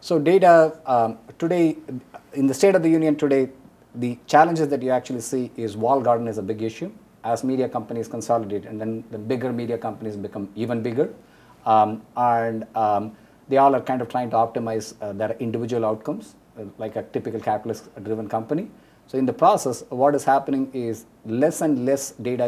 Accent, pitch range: Indian, 115-145 Hz